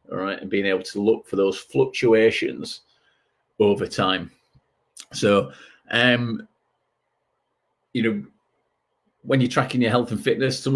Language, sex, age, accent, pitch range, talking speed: English, male, 30-49, British, 100-130 Hz, 135 wpm